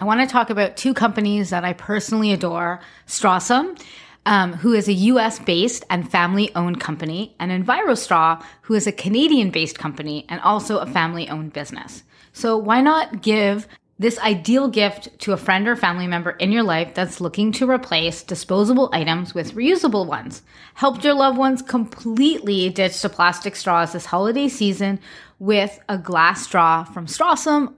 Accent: American